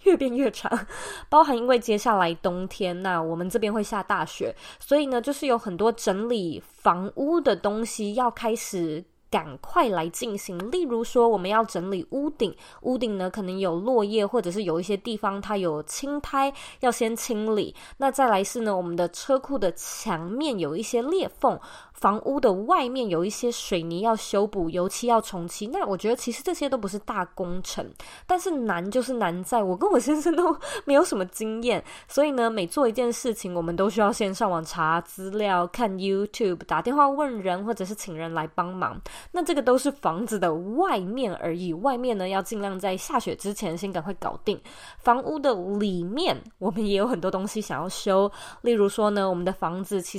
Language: Chinese